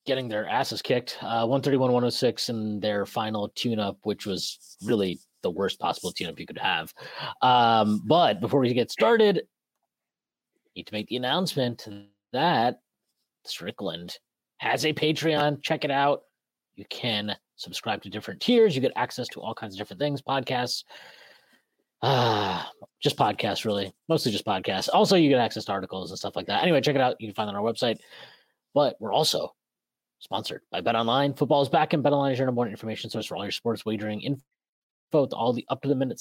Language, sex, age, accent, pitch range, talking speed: English, male, 30-49, American, 115-145 Hz, 180 wpm